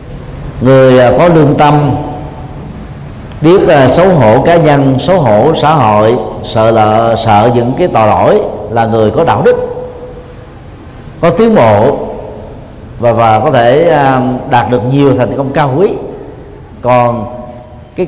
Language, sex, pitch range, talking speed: Vietnamese, male, 120-165 Hz, 140 wpm